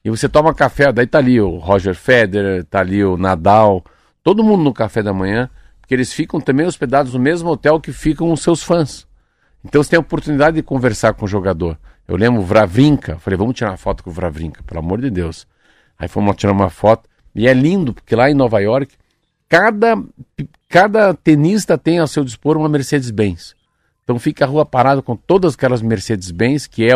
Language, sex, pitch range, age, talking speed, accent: Portuguese, male, 100-145 Hz, 50-69, 205 wpm, Brazilian